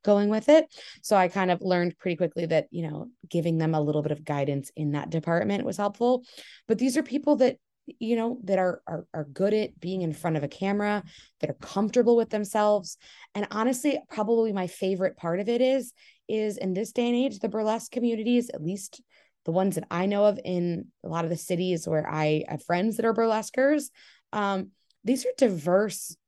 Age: 20-39